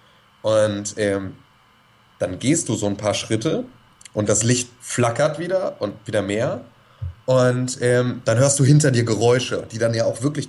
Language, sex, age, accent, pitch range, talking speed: German, male, 30-49, German, 125-155 Hz, 170 wpm